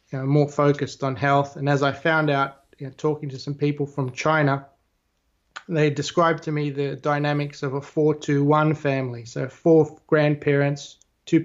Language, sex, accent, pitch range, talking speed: English, male, Australian, 135-155 Hz, 185 wpm